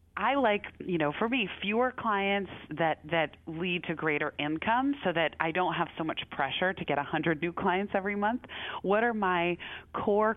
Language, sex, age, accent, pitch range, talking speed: English, female, 30-49, American, 150-190 Hz, 195 wpm